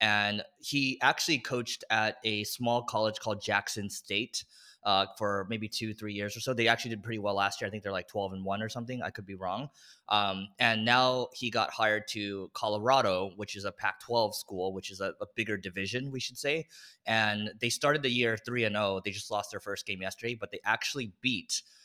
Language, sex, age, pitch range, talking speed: English, male, 20-39, 100-120 Hz, 220 wpm